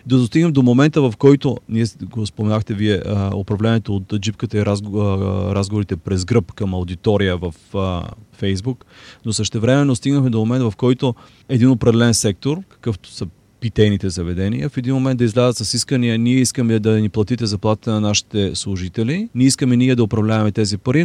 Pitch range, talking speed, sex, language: 105-135 Hz, 165 wpm, male, Bulgarian